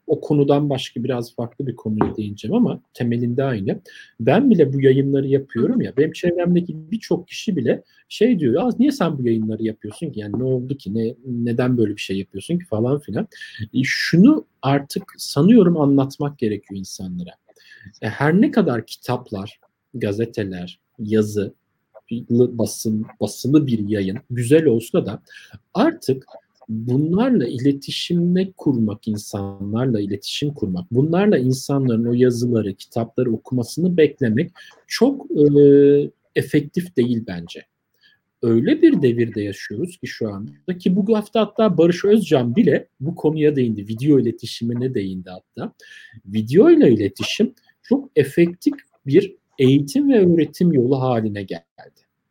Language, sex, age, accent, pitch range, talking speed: Turkish, male, 50-69, native, 110-170 Hz, 135 wpm